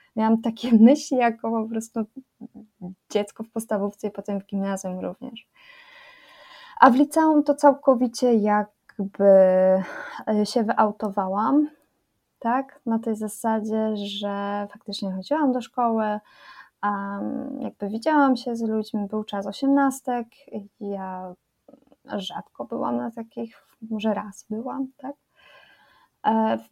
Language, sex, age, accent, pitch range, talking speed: Polish, female, 20-39, native, 205-250 Hz, 110 wpm